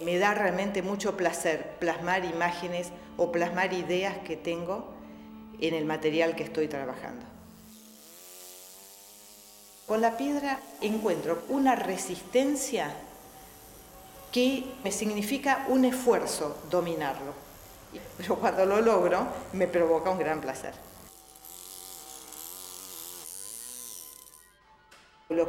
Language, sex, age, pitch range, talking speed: English, female, 40-59, 155-215 Hz, 95 wpm